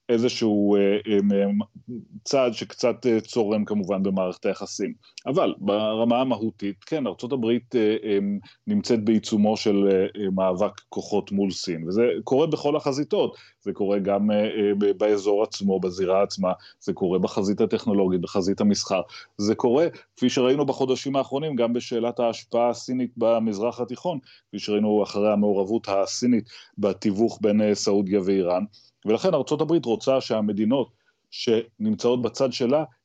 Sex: male